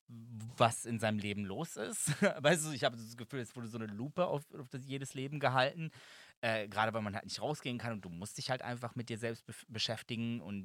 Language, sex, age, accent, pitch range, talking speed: German, male, 30-49, German, 115-145 Hz, 240 wpm